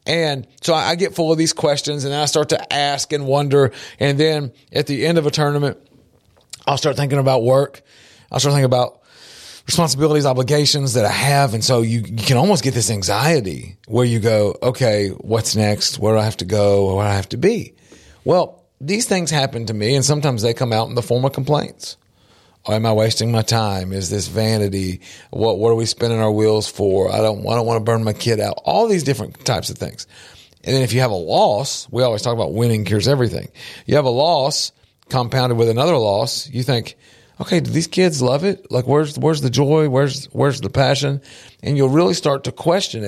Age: 40-59